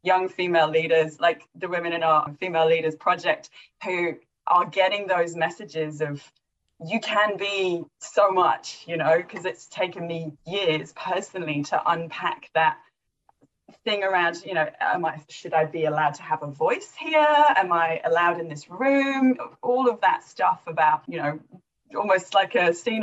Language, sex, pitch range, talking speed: English, female, 165-210 Hz, 170 wpm